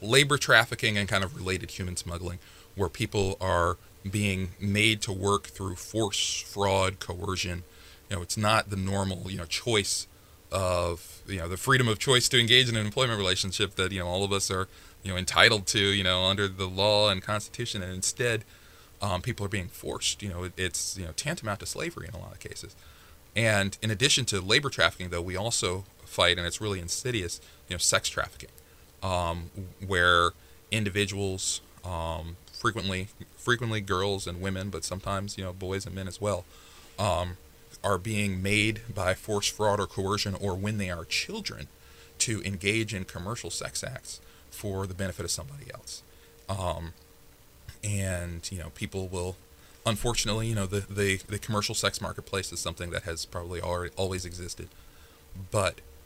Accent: American